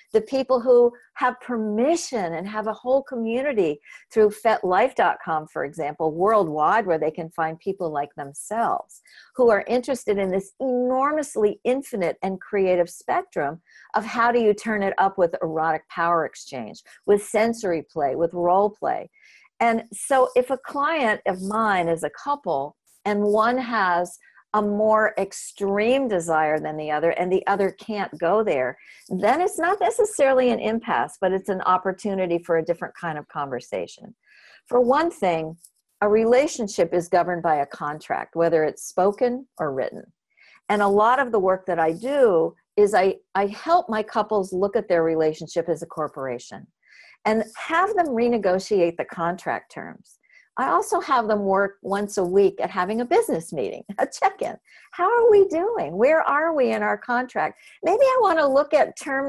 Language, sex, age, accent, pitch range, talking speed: English, female, 50-69, American, 180-255 Hz, 170 wpm